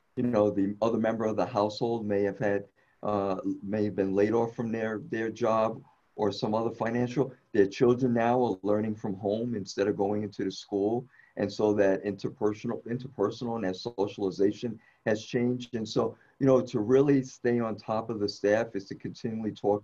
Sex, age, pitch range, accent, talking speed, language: male, 50-69, 100-125 Hz, American, 195 wpm, English